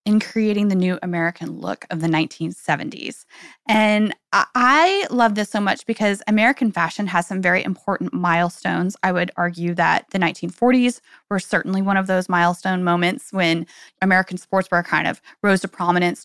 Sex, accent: female, American